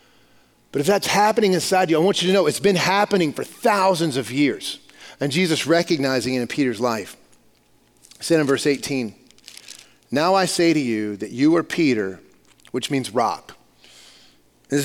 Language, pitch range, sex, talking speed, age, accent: English, 130-185 Hz, male, 170 wpm, 40-59, American